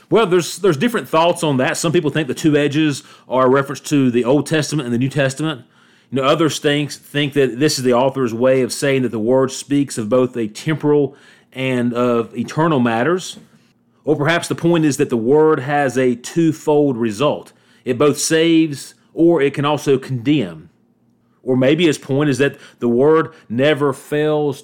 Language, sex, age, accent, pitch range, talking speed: English, male, 40-59, American, 120-150 Hz, 190 wpm